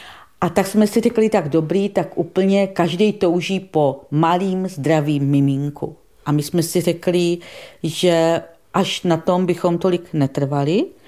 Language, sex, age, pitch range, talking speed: Czech, female, 40-59, 150-195 Hz, 145 wpm